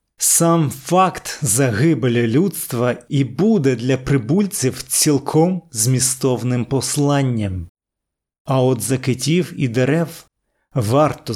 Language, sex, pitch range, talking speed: Ukrainian, male, 125-160 Hz, 90 wpm